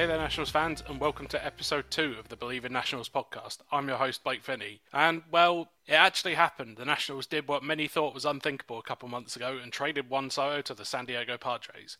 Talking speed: 230 wpm